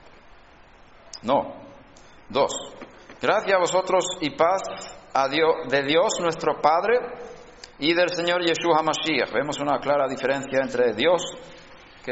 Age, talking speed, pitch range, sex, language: 50-69, 115 wpm, 145-185 Hz, male, Spanish